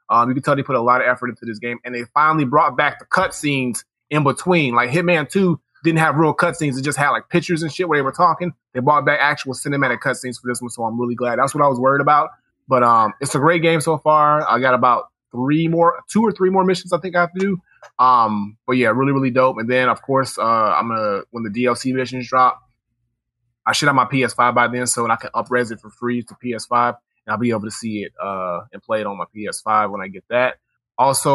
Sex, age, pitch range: male, 20-39, 120-155 Hz